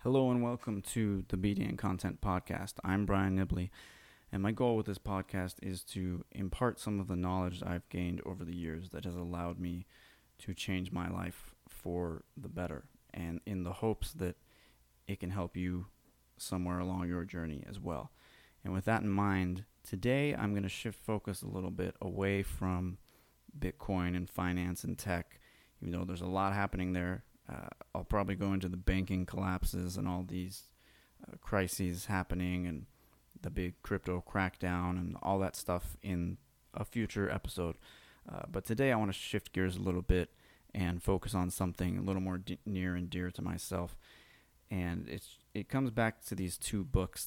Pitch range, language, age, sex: 90-100 Hz, English, 20-39, male